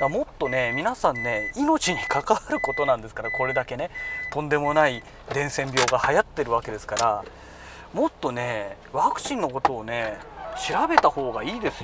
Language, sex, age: Japanese, male, 40-59